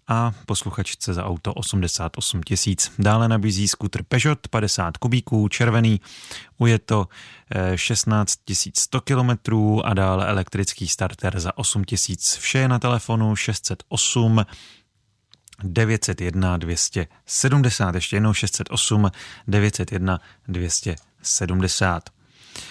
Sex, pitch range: male, 95-120 Hz